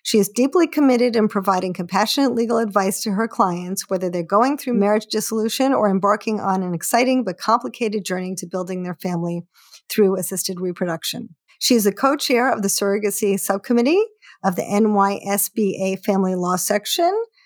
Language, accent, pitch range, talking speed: English, American, 190-230 Hz, 160 wpm